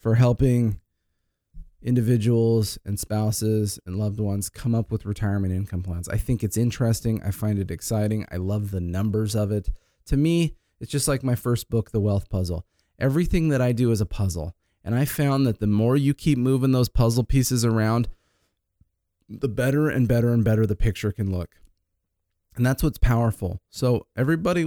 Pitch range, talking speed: 105-125 Hz, 180 wpm